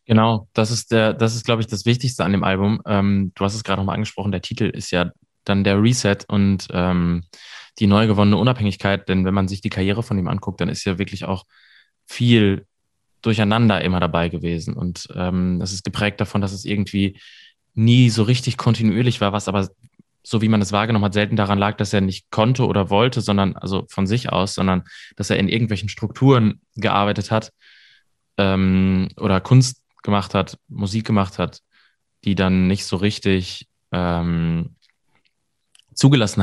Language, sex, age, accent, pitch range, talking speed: German, male, 20-39, German, 95-110 Hz, 185 wpm